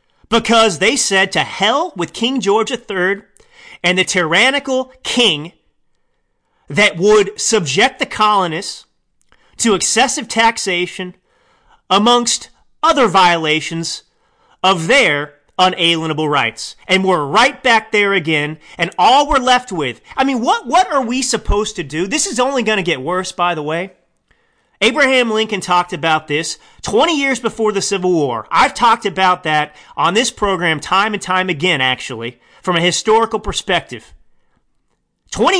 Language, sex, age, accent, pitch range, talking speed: English, male, 30-49, American, 175-245 Hz, 145 wpm